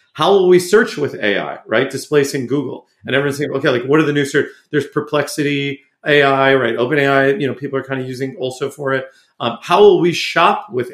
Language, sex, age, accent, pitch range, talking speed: English, male, 40-59, American, 125-150 Hz, 225 wpm